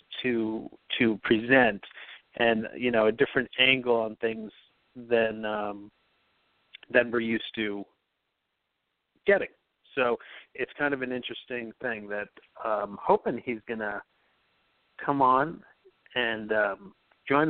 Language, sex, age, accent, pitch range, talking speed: English, male, 40-59, American, 115-130 Hz, 120 wpm